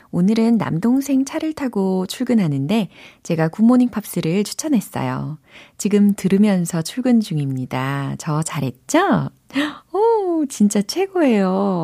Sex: female